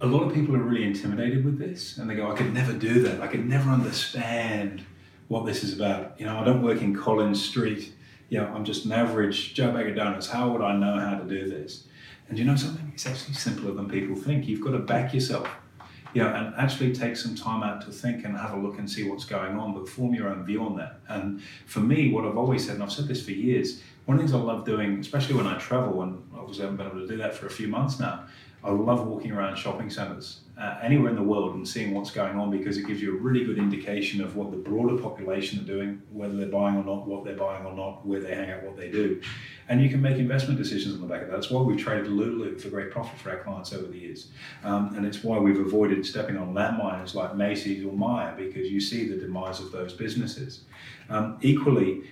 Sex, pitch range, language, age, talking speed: male, 100-125 Hz, English, 30-49, 260 wpm